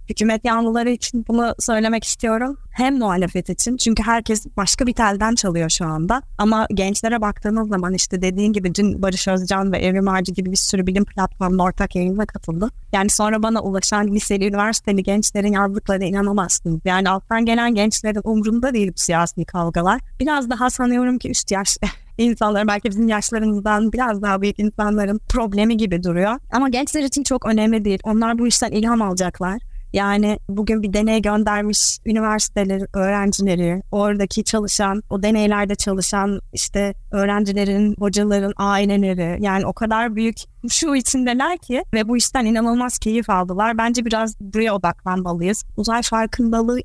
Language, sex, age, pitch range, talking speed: Turkish, female, 20-39, 195-230 Hz, 150 wpm